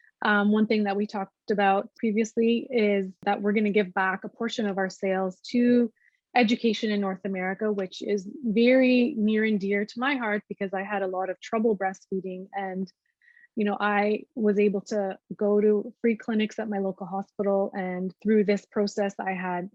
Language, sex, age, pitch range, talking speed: English, female, 20-39, 195-225 Hz, 190 wpm